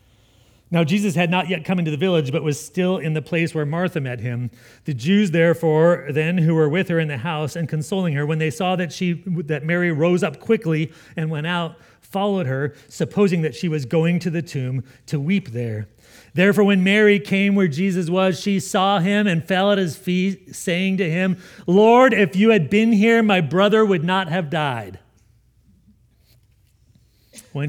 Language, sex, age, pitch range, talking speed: English, male, 40-59, 110-170 Hz, 195 wpm